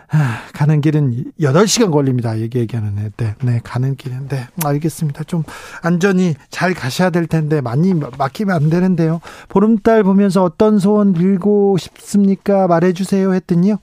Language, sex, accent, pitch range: Korean, male, native, 145-180 Hz